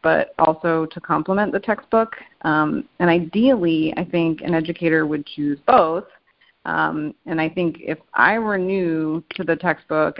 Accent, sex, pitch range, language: American, female, 155-190 Hz, English